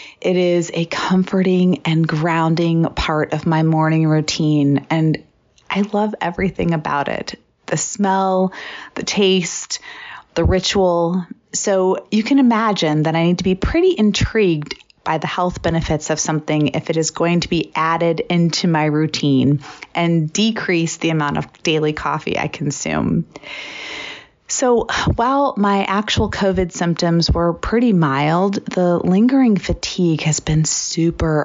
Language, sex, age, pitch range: English, female, 30-49, 155-195 Hz